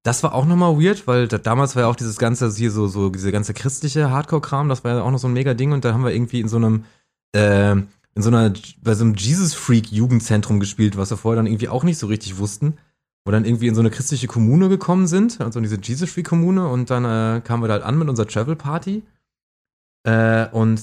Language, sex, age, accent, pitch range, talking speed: German, male, 20-39, German, 110-155 Hz, 235 wpm